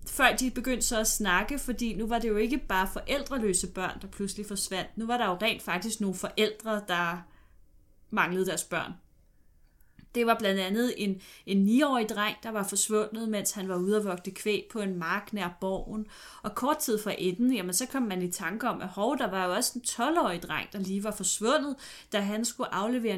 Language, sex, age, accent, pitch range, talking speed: Danish, female, 30-49, native, 190-225 Hz, 210 wpm